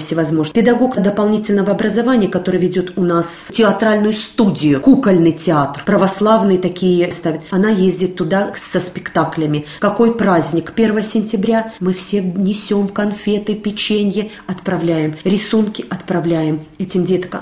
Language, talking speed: Russian, 115 wpm